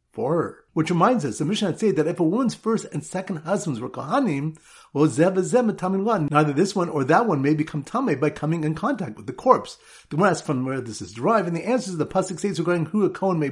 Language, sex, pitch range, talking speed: English, male, 145-195 Hz, 250 wpm